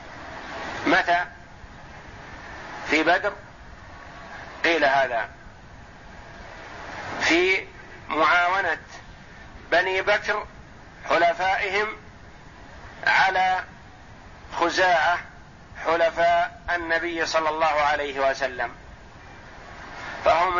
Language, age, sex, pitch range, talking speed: Arabic, 50-69, male, 165-200 Hz, 55 wpm